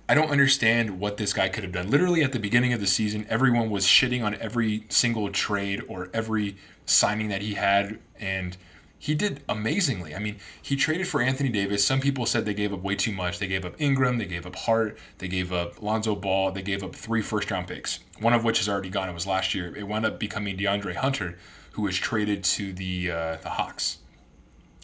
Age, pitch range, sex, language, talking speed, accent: 20-39, 95-115 Hz, male, English, 220 wpm, American